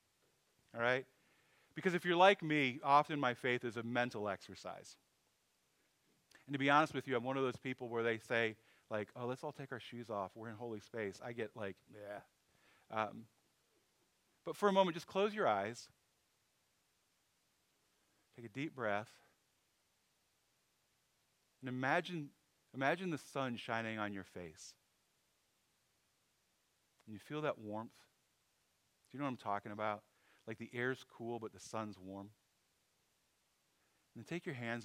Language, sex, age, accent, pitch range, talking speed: English, male, 40-59, American, 110-135 Hz, 155 wpm